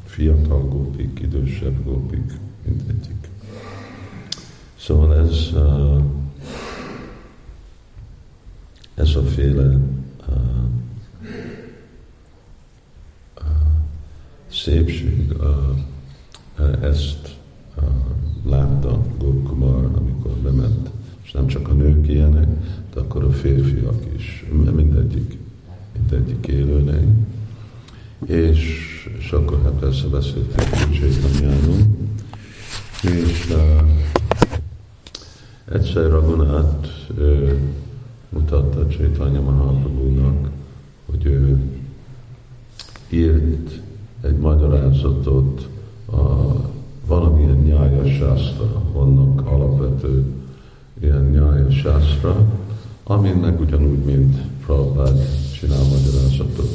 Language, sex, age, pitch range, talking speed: Hungarian, male, 50-69, 70-95 Hz, 70 wpm